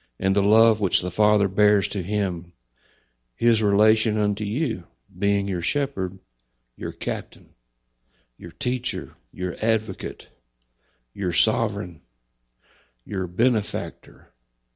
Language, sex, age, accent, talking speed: English, male, 60-79, American, 105 wpm